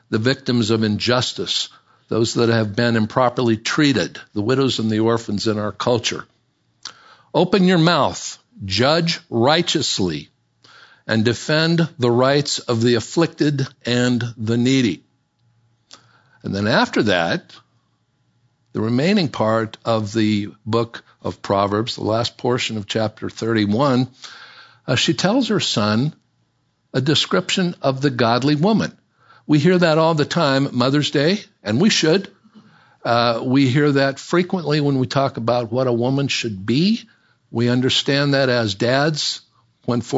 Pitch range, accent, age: 115-150 Hz, American, 60-79